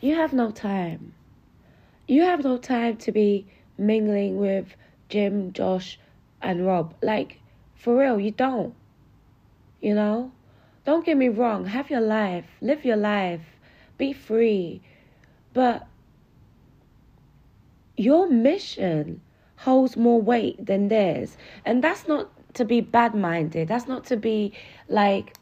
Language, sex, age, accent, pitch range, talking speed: English, female, 20-39, British, 185-250 Hz, 125 wpm